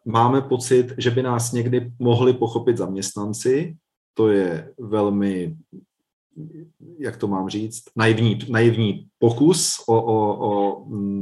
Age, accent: 40-59, native